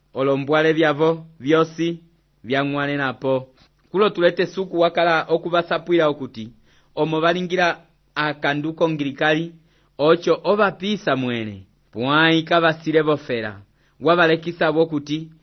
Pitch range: 130-160 Hz